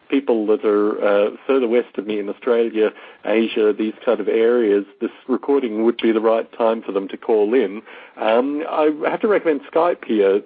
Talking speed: 195 wpm